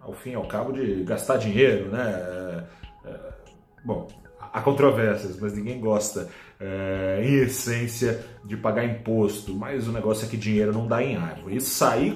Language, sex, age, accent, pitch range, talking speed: Portuguese, male, 30-49, Brazilian, 105-135 Hz, 155 wpm